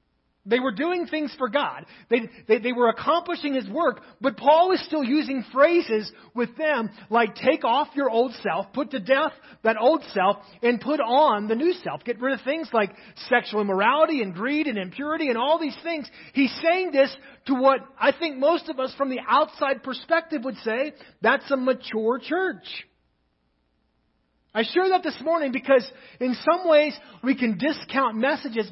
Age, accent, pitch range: 30-49, American, 200-280 Hz